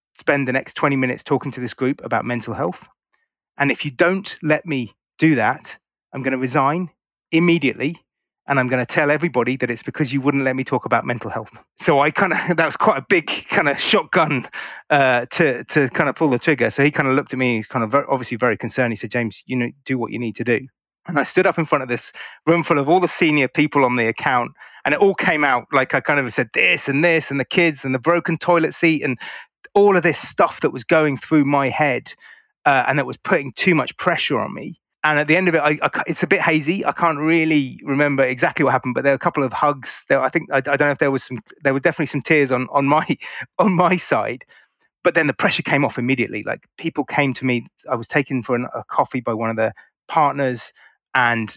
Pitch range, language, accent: 125-155 Hz, English, British